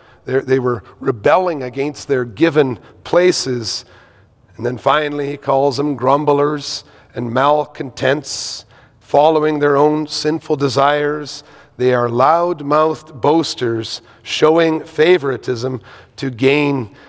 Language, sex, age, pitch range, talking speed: English, male, 40-59, 125-155 Hz, 100 wpm